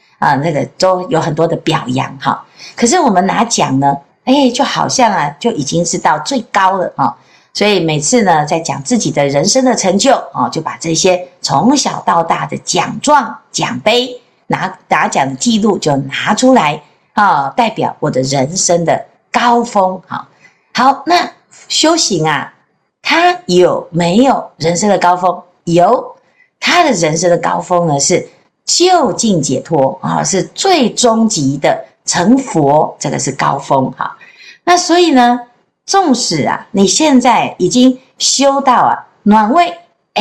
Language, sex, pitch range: Chinese, female, 175-270 Hz